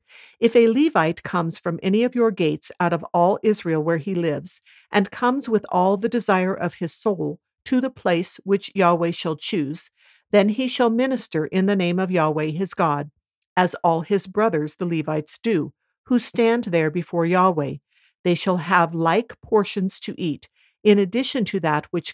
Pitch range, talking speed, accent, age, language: 165-215 Hz, 180 wpm, American, 50-69, English